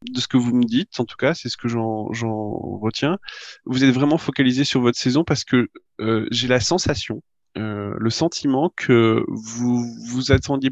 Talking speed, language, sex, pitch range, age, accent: 195 wpm, French, male, 110-130 Hz, 20-39, French